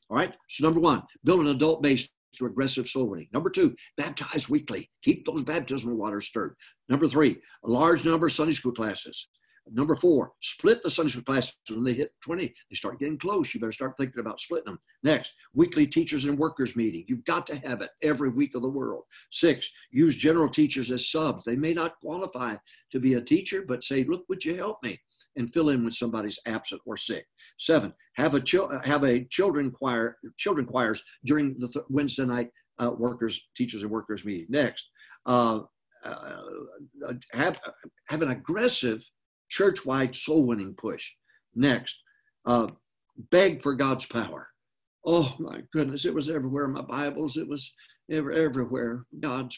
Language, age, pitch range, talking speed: English, 60-79, 115-150 Hz, 180 wpm